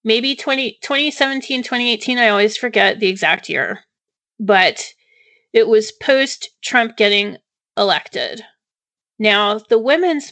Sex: female